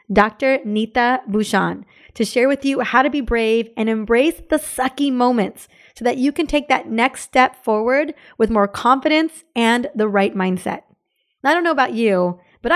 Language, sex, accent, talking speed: English, female, American, 185 wpm